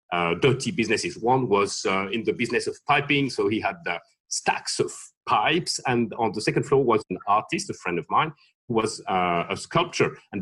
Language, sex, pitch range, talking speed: English, male, 130-200 Hz, 205 wpm